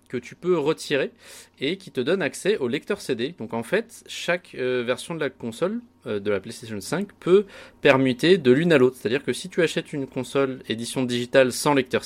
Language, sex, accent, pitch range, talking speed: French, male, French, 105-135 Hz, 215 wpm